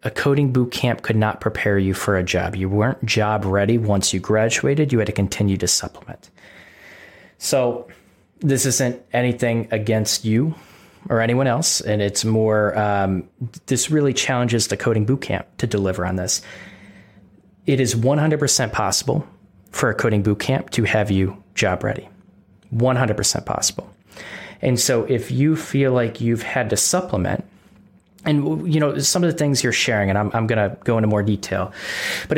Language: English